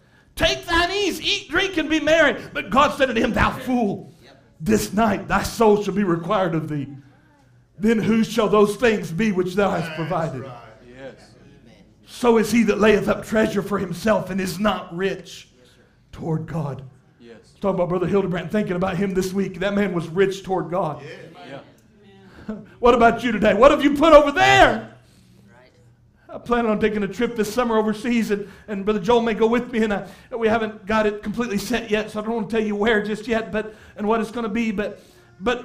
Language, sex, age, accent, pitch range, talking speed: English, male, 50-69, American, 200-255 Hz, 200 wpm